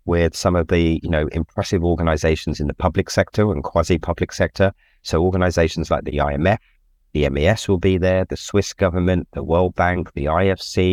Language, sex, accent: English, male, British